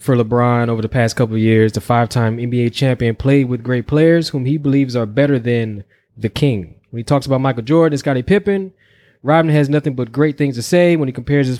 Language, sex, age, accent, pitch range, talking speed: English, male, 20-39, American, 110-140 Hz, 235 wpm